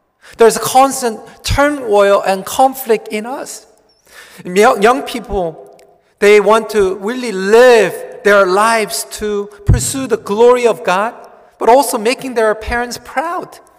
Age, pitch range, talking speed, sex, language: 40-59, 170-225 Hz, 125 wpm, male, English